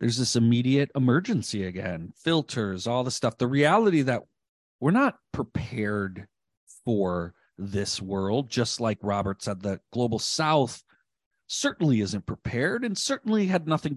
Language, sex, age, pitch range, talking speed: English, male, 40-59, 105-145 Hz, 140 wpm